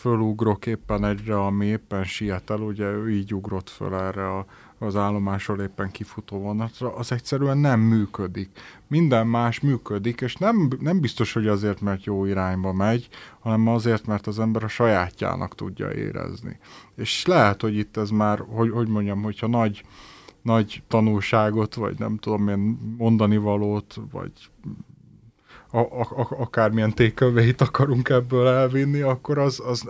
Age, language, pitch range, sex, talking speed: 30-49, Hungarian, 105-125 Hz, male, 145 wpm